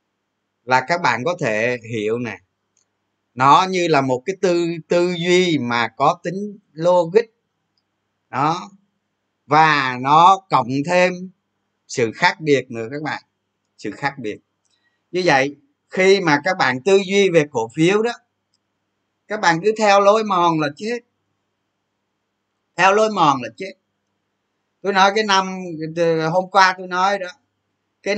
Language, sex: Vietnamese, male